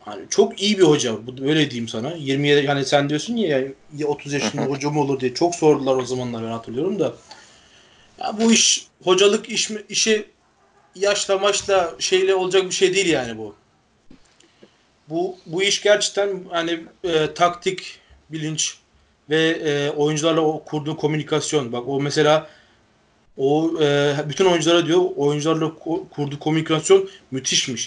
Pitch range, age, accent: 130-175 Hz, 30-49, native